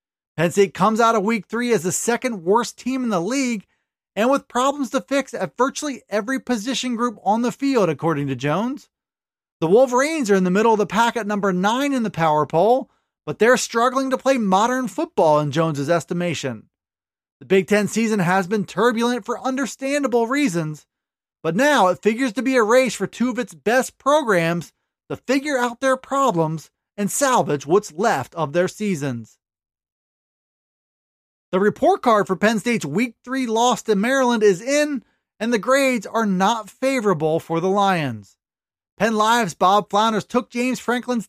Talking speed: 175 wpm